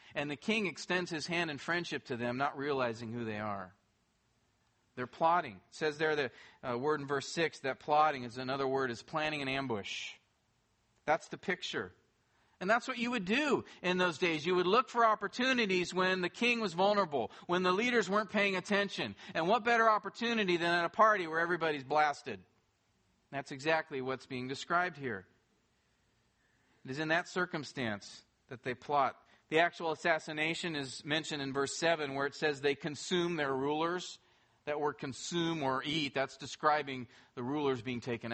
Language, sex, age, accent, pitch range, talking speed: English, male, 40-59, American, 130-180 Hz, 180 wpm